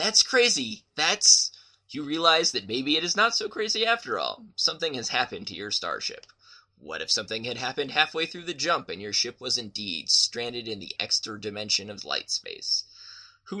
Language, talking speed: English, 190 wpm